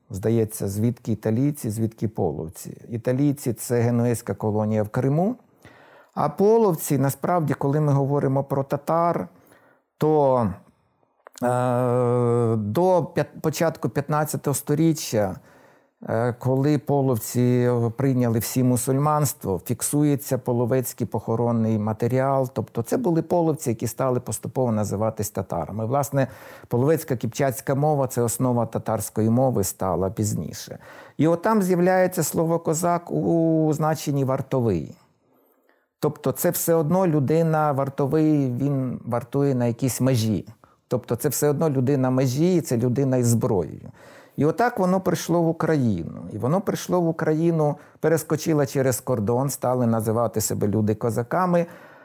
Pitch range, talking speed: 120-155 Hz, 120 wpm